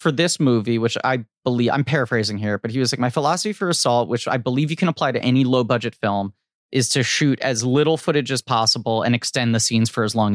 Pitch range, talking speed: 120-180 Hz, 250 wpm